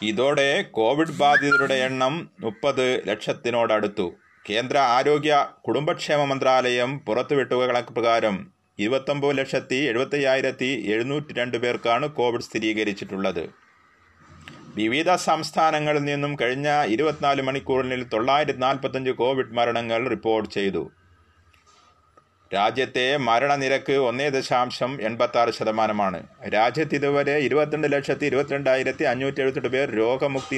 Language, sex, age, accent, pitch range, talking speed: Malayalam, male, 30-49, native, 115-140 Hz, 90 wpm